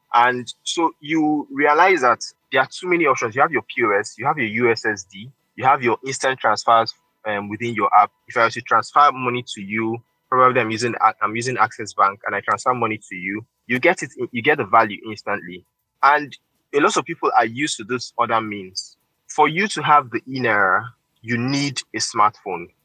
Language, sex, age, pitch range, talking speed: English, male, 20-39, 110-135 Hz, 200 wpm